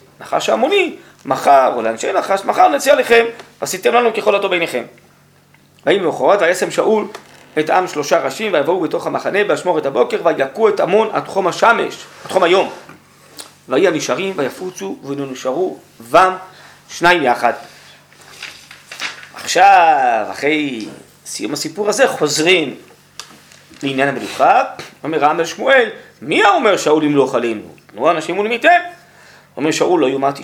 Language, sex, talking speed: Hebrew, male, 135 wpm